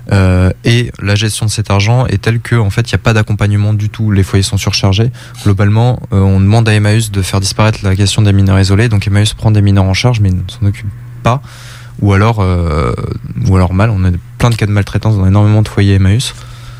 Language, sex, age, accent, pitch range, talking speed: French, male, 20-39, French, 95-120 Hz, 240 wpm